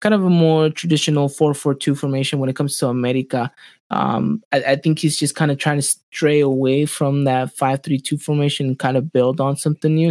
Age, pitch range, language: 20-39, 135-165 Hz, English